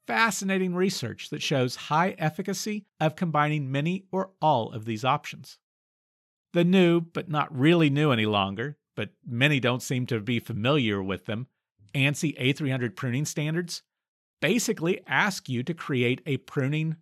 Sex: male